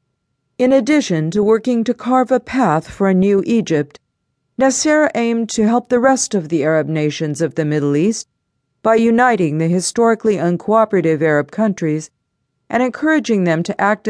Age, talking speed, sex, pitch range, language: 50-69, 160 wpm, female, 155-225 Hz, English